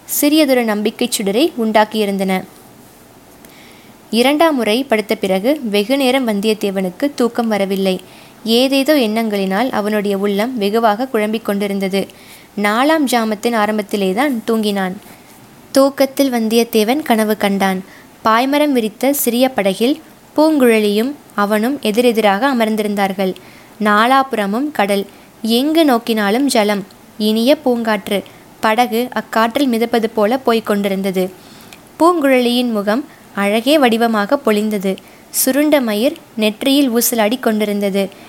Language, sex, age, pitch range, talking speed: Tamil, female, 20-39, 210-265 Hz, 85 wpm